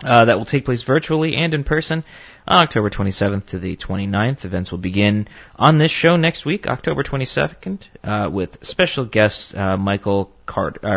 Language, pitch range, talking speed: English, 95-140 Hz, 175 wpm